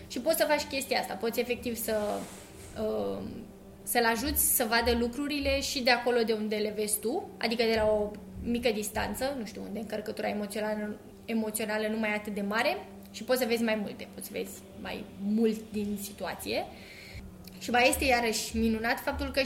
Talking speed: 180 wpm